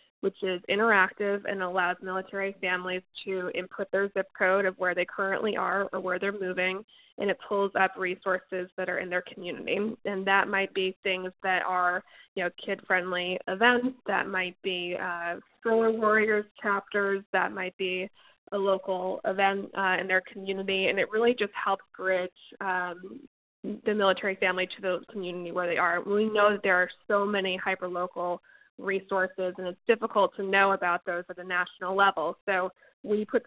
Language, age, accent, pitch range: English, 20-39, American, 180-195 Hz